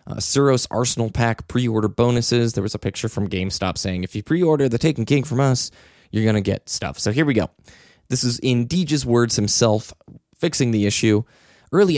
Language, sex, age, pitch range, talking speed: English, male, 20-39, 105-135 Hz, 200 wpm